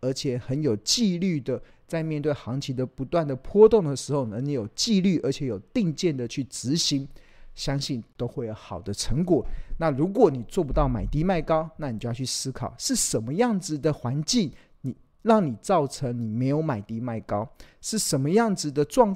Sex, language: male, Chinese